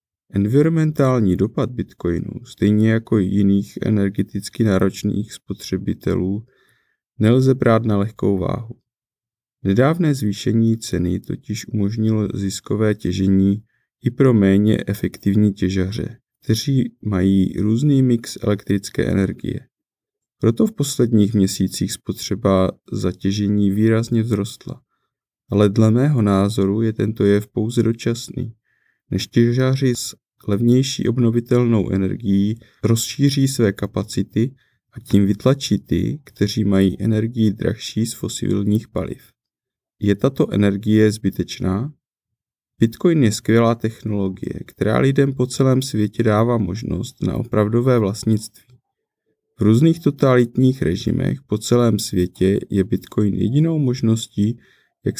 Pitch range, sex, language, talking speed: 100-120 Hz, male, Czech, 110 wpm